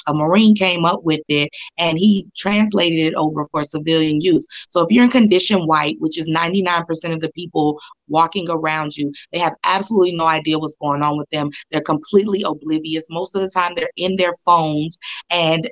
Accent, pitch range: American, 170-210 Hz